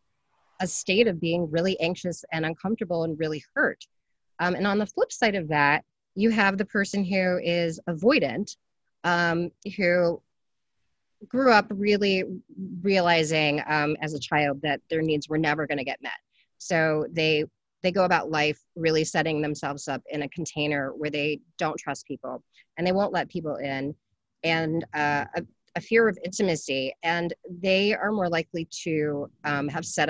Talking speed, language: 170 wpm, English